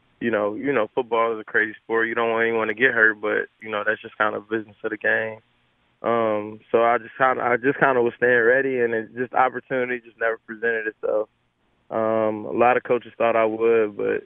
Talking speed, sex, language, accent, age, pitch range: 225 wpm, male, English, American, 20-39, 110-125 Hz